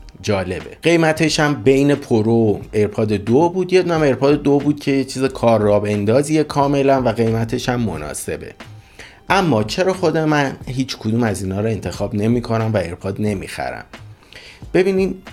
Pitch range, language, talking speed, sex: 100-130 Hz, Persian, 155 wpm, male